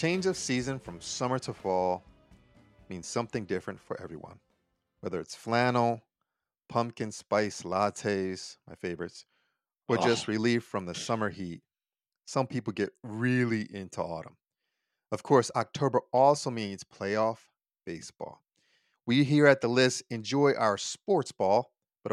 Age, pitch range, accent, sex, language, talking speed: 40-59, 100-130 Hz, American, male, English, 135 wpm